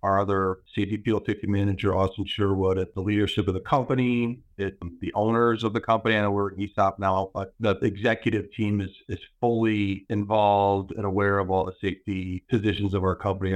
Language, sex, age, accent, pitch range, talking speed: English, male, 40-59, American, 95-105 Hz, 190 wpm